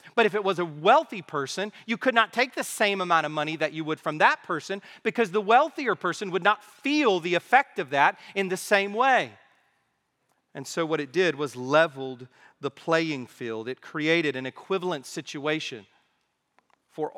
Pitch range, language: 155-225 Hz, English